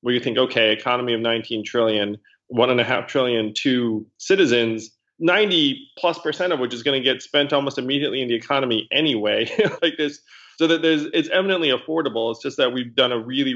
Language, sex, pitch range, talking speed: English, male, 115-140 Hz, 205 wpm